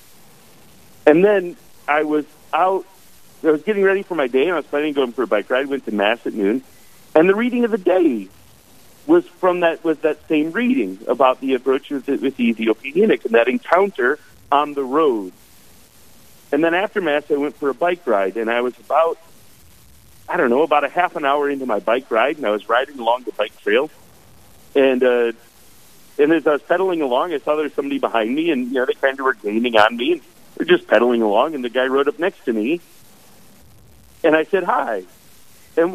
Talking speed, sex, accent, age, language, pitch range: 215 wpm, male, American, 50-69, English, 130-190 Hz